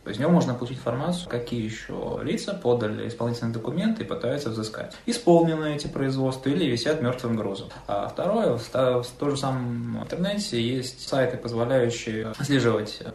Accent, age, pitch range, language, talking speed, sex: native, 20-39, 110-140 Hz, Russian, 150 wpm, male